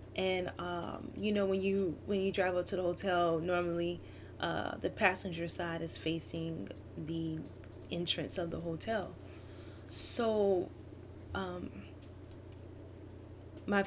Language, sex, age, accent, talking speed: English, female, 10-29, American, 120 wpm